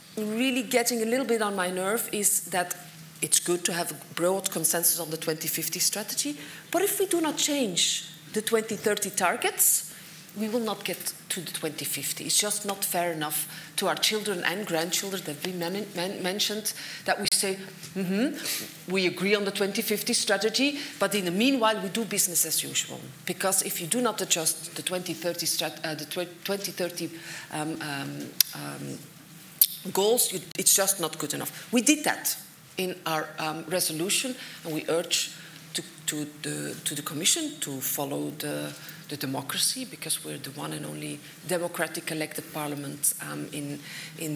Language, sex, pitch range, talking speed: English, female, 155-200 Hz, 170 wpm